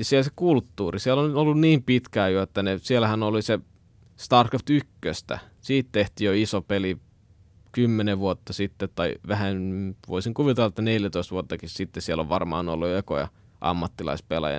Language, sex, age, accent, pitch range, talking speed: Finnish, male, 20-39, native, 95-115 Hz, 155 wpm